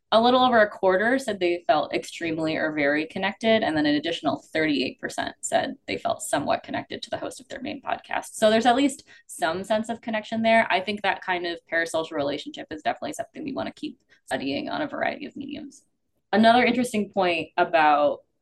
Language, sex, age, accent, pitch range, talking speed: English, female, 20-39, American, 155-235 Hz, 200 wpm